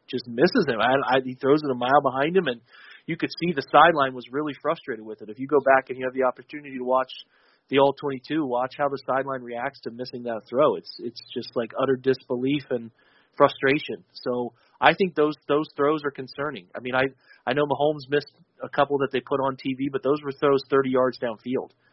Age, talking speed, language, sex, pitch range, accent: 30-49, 220 wpm, English, male, 125-140 Hz, American